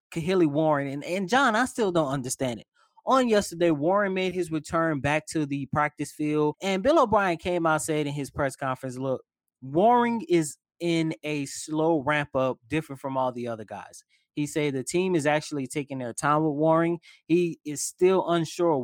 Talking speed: 190 wpm